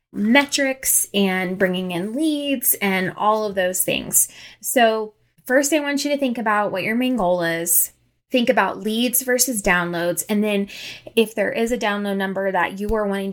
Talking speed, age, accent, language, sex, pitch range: 180 wpm, 10-29, American, English, female, 190-255 Hz